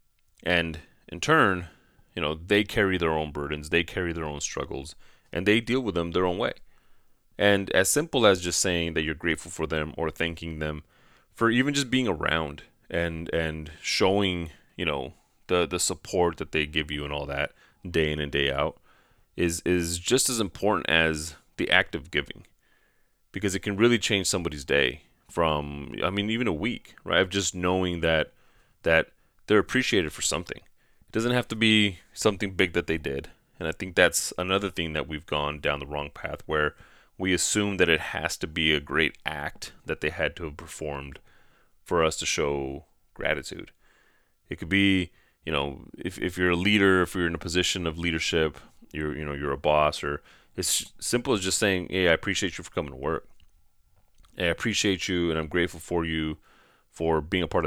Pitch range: 75-95 Hz